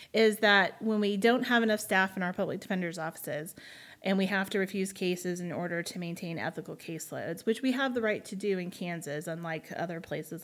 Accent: American